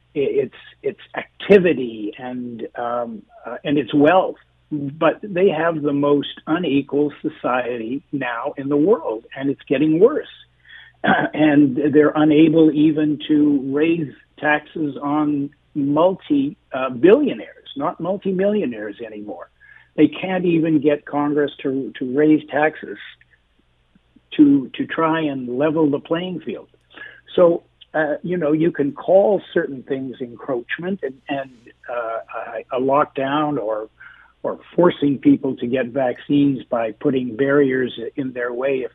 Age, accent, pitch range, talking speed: 60-79, American, 130-160 Hz, 130 wpm